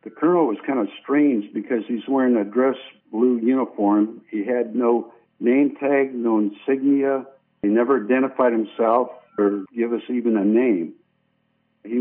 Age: 60-79